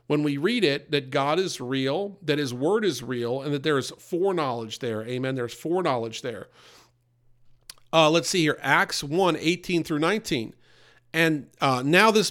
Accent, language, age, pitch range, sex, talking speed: American, English, 50-69, 140-180 Hz, male, 175 wpm